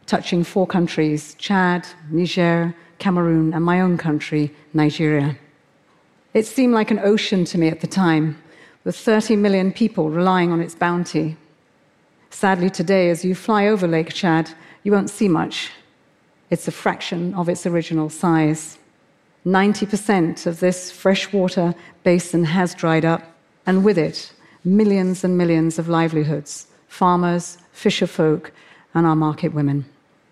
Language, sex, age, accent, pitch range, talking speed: English, female, 40-59, British, 160-195 Hz, 140 wpm